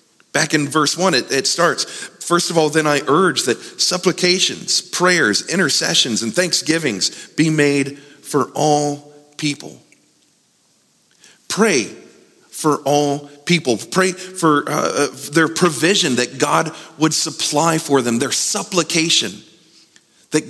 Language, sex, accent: English, male, American